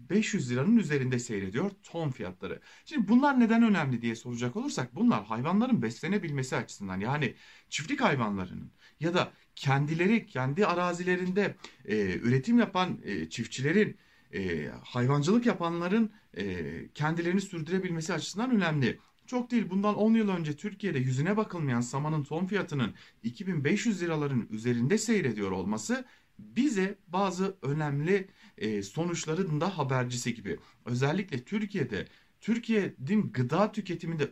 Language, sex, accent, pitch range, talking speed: German, male, Turkish, 125-205 Hz, 115 wpm